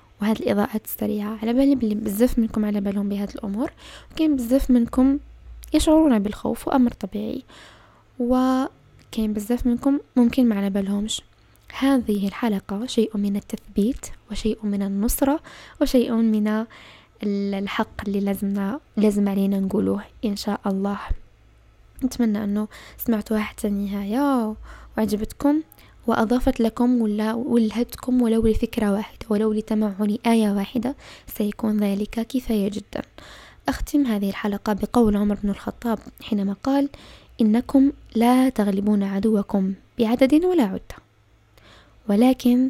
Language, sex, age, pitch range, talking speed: Arabic, female, 10-29, 205-245 Hz, 110 wpm